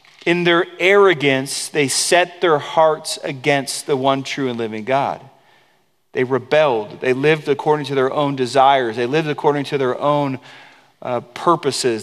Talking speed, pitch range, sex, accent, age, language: 155 wpm, 135-165 Hz, male, American, 40-59, English